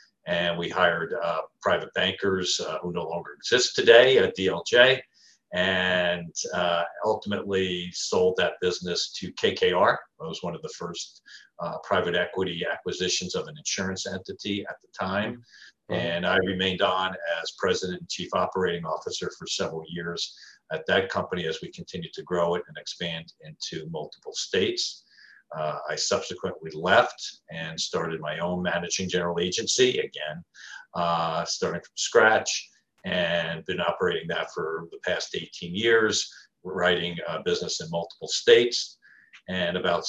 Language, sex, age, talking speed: English, male, 50-69, 150 wpm